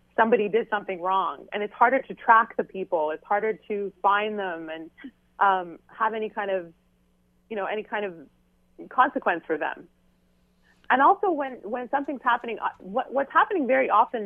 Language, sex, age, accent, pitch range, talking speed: English, female, 30-49, American, 180-250 Hz, 170 wpm